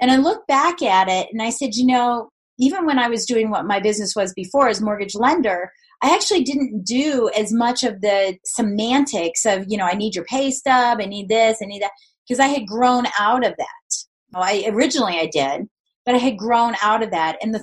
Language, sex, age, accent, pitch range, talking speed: English, female, 30-49, American, 205-265 Hz, 230 wpm